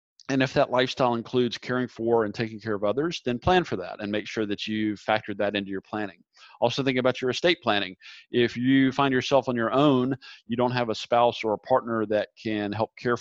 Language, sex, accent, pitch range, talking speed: English, male, American, 105-125 Hz, 230 wpm